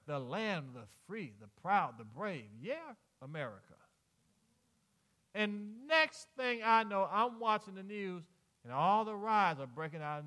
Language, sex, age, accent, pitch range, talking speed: English, male, 40-59, American, 145-220 Hz, 160 wpm